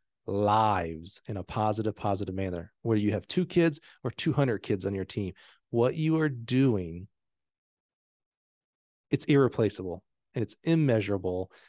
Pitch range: 100-120 Hz